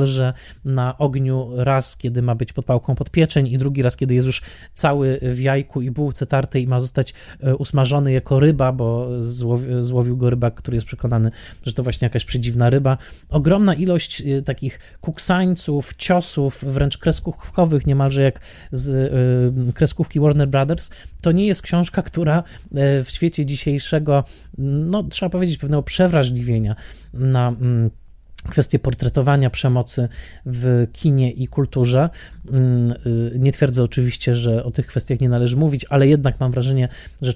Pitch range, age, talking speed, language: 125-150 Hz, 20-39, 145 wpm, Polish